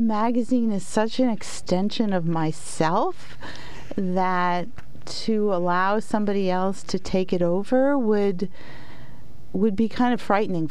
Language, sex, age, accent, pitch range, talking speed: English, female, 40-59, American, 155-200 Hz, 125 wpm